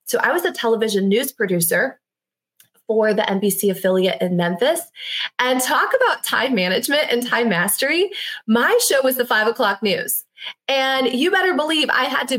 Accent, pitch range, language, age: American, 195-260 Hz, English, 20-39